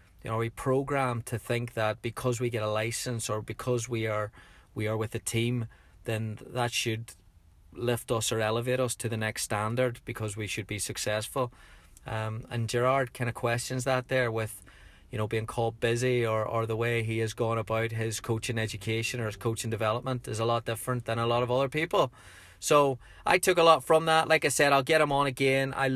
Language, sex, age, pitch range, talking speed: English, male, 30-49, 115-130 Hz, 220 wpm